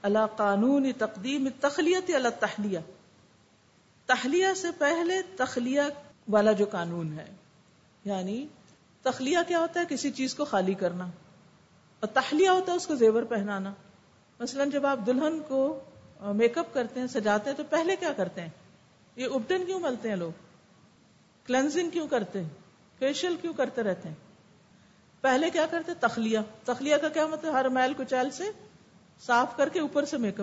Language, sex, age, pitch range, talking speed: Urdu, female, 50-69, 205-290 Hz, 160 wpm